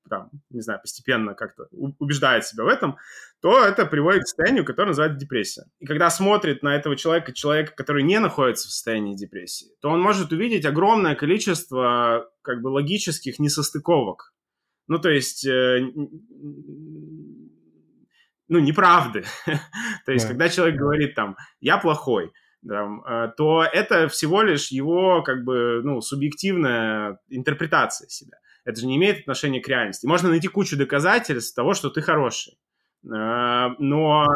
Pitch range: 130-170 Hz